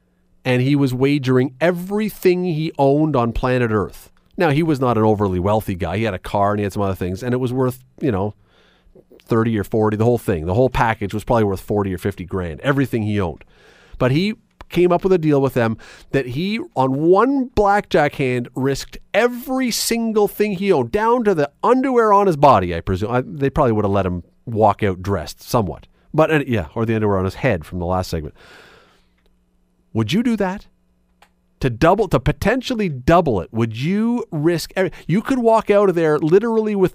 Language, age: English, 40-59